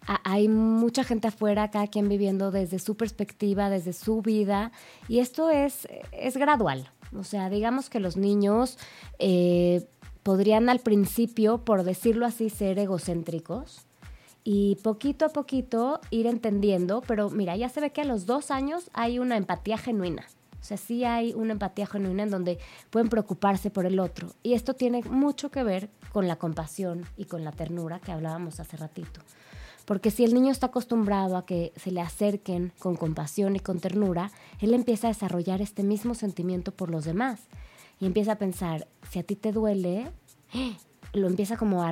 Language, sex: Spanish, female